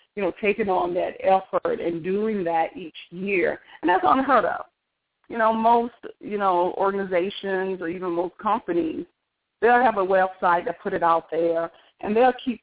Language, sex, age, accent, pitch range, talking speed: English, female, 40-59, American, 170-205 Hz, 175 wpm